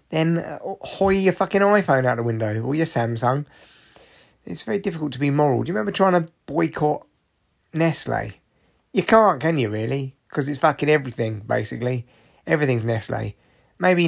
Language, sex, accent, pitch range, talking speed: English, male, British, 125-175 Hz, 160 wpm